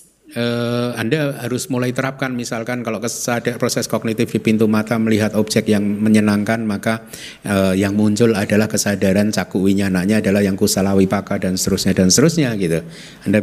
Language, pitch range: Indonesian, 90-115 Hz